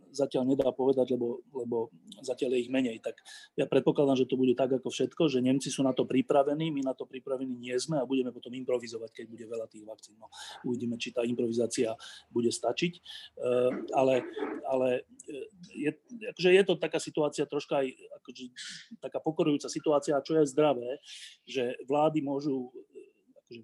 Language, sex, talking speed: Slovak, male, 170 wpm